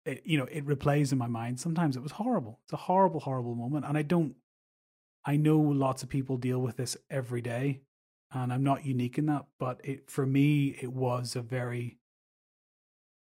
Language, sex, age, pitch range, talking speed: English, male, 30-49, 125-145 Hz, 200 wpm